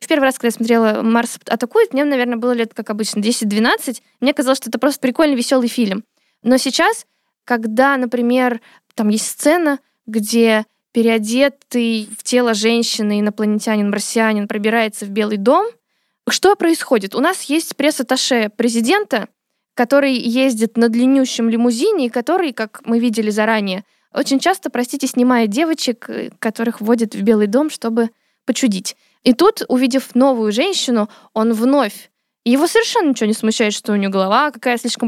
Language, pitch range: Russian, 220-270 Hz